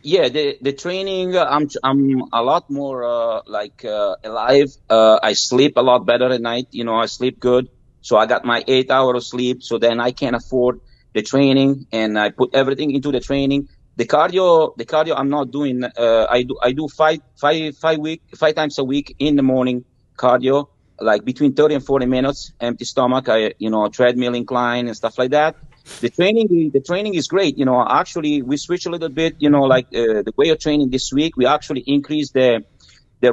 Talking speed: 215 wpm